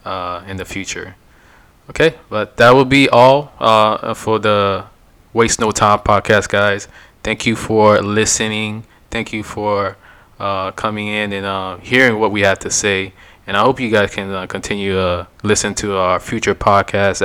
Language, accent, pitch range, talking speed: English, American, 100-110 Hz, 175 wpm